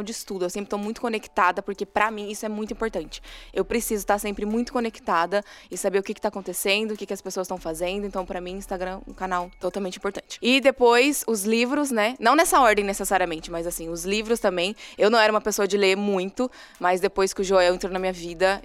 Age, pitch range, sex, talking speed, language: 20-39, 185-215 Hz, female, 240 wpm, Portuguese